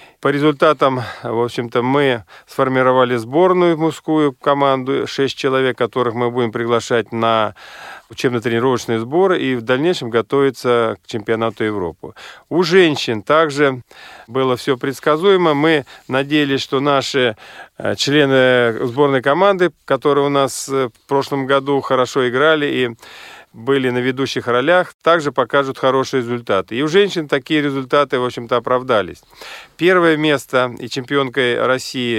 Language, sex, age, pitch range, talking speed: Russian, male, 40-59, 120-145 Hz, 125 wpm